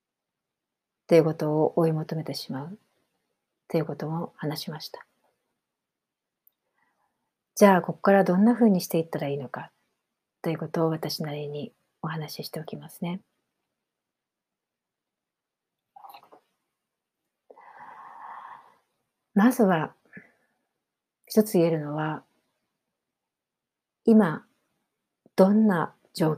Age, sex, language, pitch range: 40-59, female, Japanese, 155-190 Hz